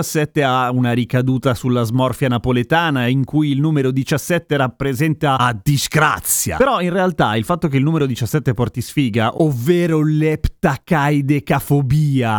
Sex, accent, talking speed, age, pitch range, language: male, native, 130 wpm, 30-49, 125-165 Hz, Italian